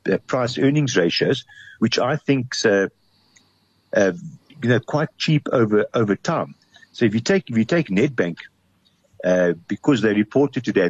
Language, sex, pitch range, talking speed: English, male, 95-125 Hz, 160 wpm